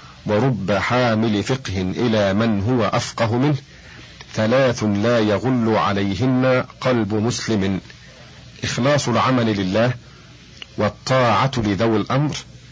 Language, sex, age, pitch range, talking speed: Arabic, male, 50-69, 105-125 Hz, 95 wpm